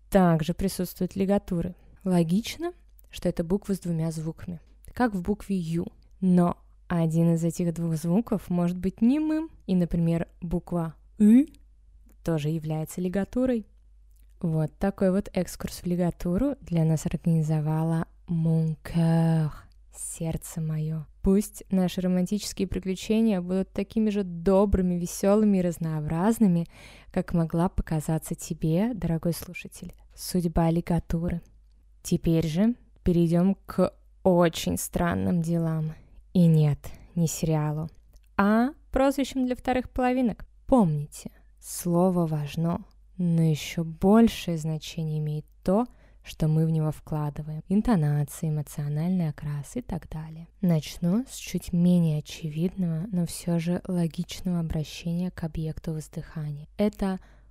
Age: 20-39